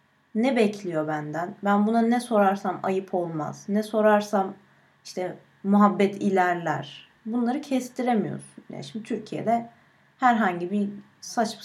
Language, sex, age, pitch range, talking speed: Turkish, female, 30-49, 195-260 Hz, 115 wpm